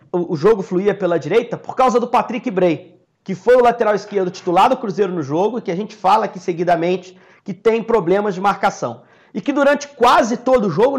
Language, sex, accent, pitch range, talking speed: Portuguese, male, Brazilian, 180-230 Hz, 215 wpm